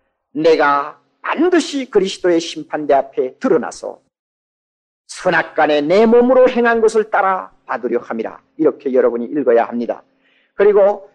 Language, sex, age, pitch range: Korean, male, 40-59, 140-220 Hz